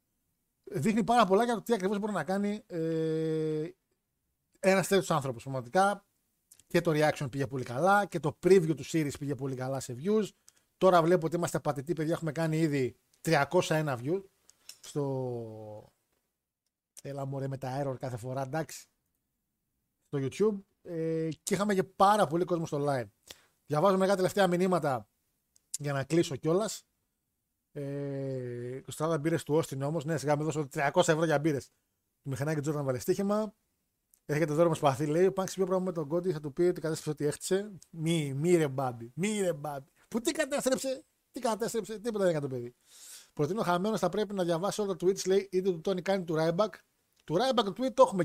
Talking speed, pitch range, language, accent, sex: 160 wpm, 145-190 Hz, Greek, native, male